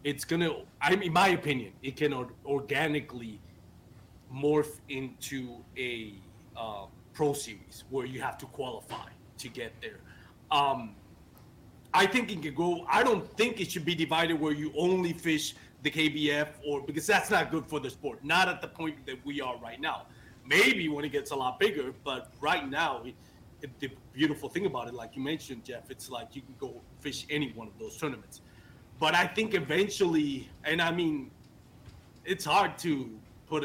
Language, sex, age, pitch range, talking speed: English, male, 30-49, 125-155 Hz, 185 wpm